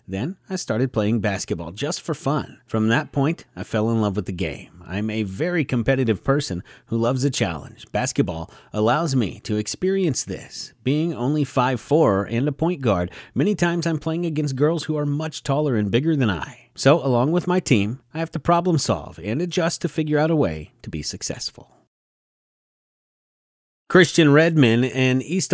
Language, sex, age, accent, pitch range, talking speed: English, male, 30-49, American, 110-160 Hz, 185 wpm